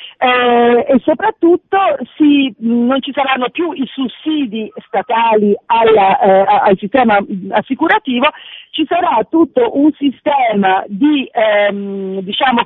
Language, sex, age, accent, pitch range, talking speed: Italian, female, 50-69, native, 215-290 Hz, 115 wpm